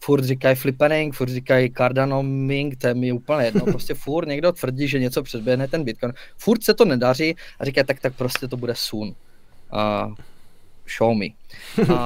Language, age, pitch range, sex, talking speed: Czech, 20-39, 130-160 Hz, male, 180 wpm